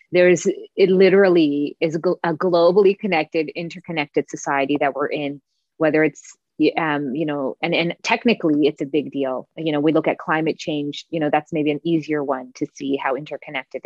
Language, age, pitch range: English, 20-39, 150-175 Hz